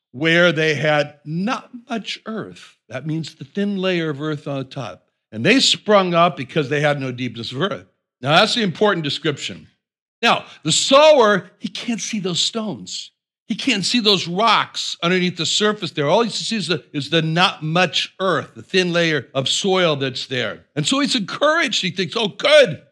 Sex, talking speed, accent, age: male, 190 wpm, American, 60-79